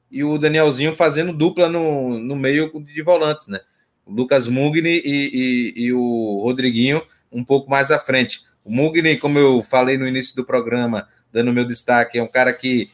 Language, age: Portuguese, 20-39